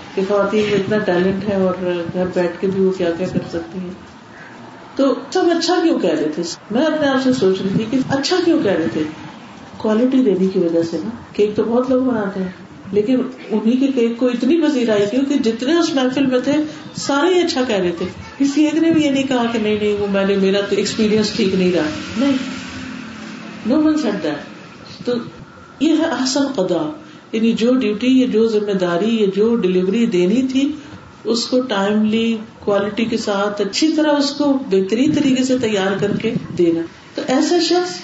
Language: Urdu